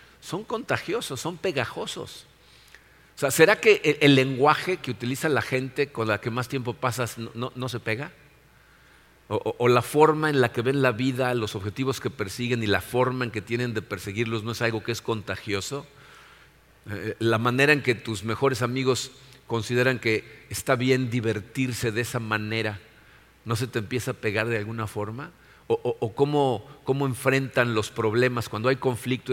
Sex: male